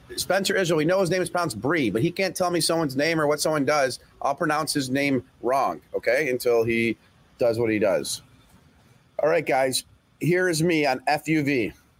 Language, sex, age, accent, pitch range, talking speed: English, male, 40-59, American, 115-150 Hz, 200 wpm